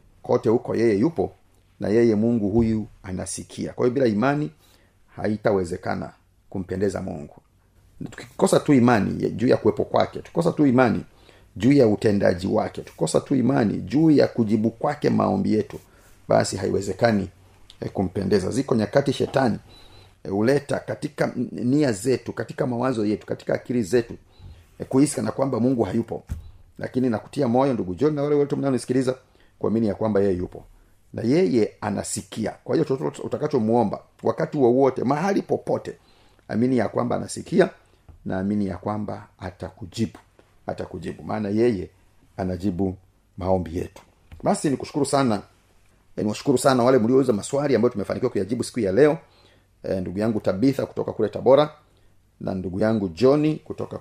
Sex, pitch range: male, 95-125 Hz